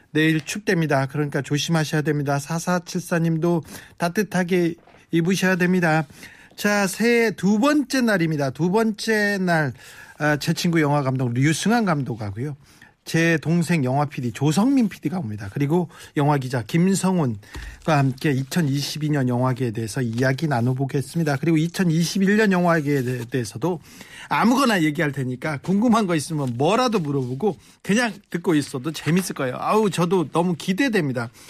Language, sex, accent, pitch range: Korean, male, native, 140-195 Hz